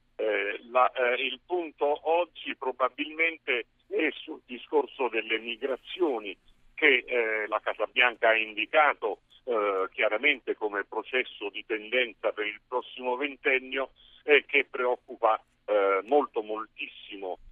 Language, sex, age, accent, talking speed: Italian, male, 50-69, native, 115 wpm